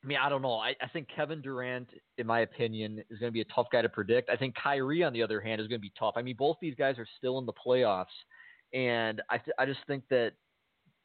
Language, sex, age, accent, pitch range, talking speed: English, male, 30-49, American, 115-140 Hz, 275 wpm